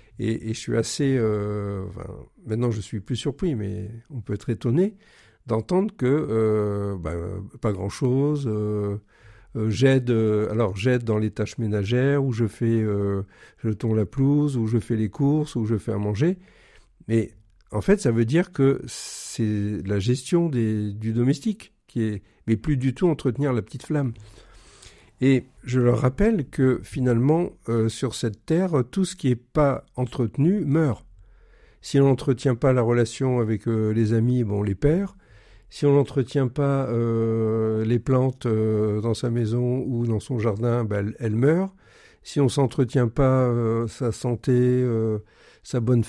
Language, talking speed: French, 175 wpm